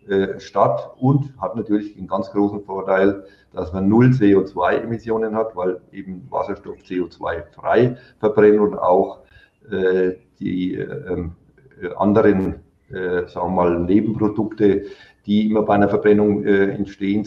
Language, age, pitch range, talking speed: German, 50-69, 95-110 Hz, 135 wpm